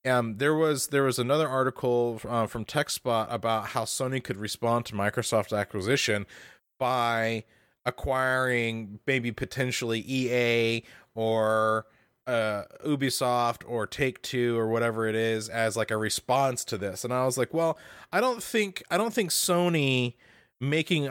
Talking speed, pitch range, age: 150 wpm, 115-145 Hz, 30-49